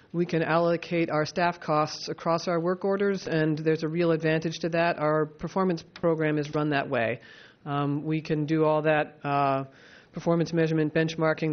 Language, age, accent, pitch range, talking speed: English, 40-59, American, 150-170 Hz, 175 wpm